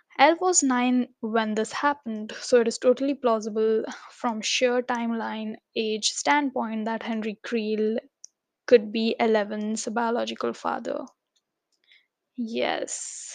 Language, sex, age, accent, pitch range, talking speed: English, female, 10-29, Indian, 220-265 Hz, 110 wpm